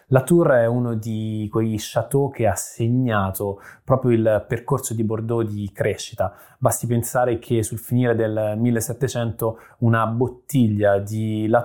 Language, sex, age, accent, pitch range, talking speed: Italian, male, 20-39, native, 110-125 Hz, 145 wpm